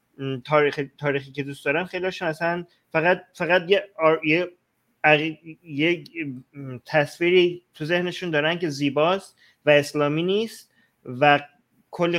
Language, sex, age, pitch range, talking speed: Persian, male, 30-49, 140-180 Hz, 115 wpm